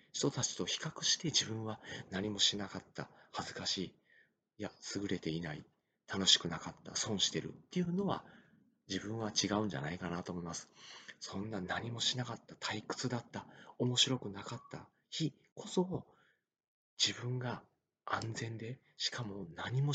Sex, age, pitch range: male, 40-59, 100-135 Hz